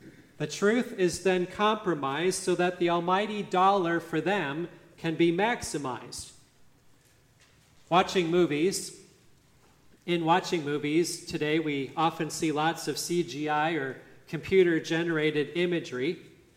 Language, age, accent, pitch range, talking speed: English, 40-59, American, 150-180 Hz, 110 wpm